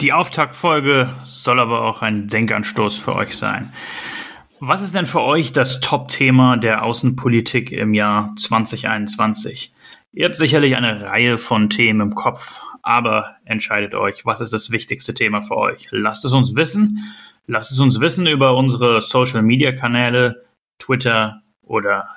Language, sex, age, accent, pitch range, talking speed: German, male, 30-49, German, 110-135 Hz, 145 wpm